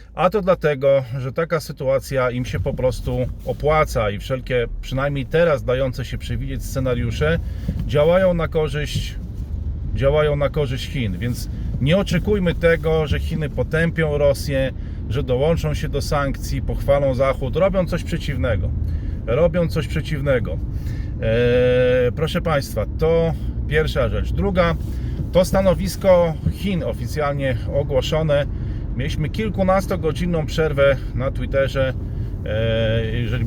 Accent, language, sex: native, Polish, male